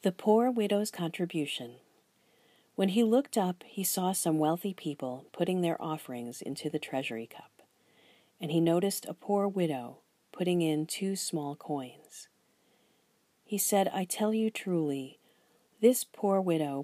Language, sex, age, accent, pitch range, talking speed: English, female, 40-59, American, 150-200 Hz, 145 wpm